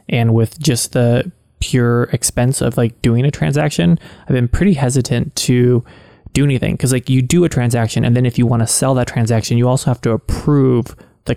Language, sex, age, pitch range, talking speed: English, male, 20-39, 115-140 Hz, 205 wpm